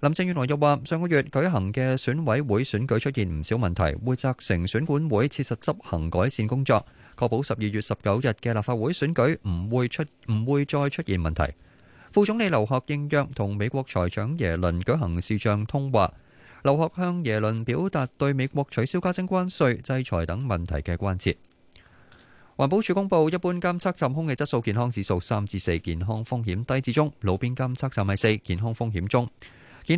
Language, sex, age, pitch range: Chinese, male, 20-39, 110-155 Hz